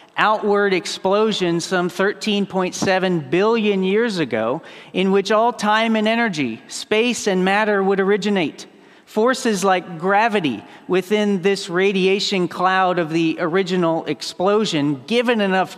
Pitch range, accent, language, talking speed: 170-205 Hz, American, English, 120 wpm